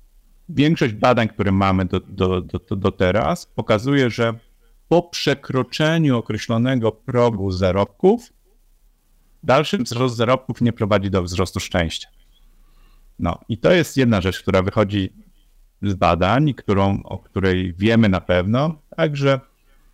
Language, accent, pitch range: Polish, native, 110-145 Hz